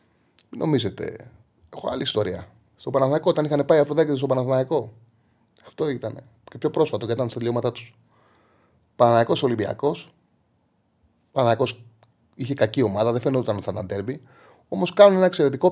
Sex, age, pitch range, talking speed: male, 30-49, 110-160 Hz, 145 wpm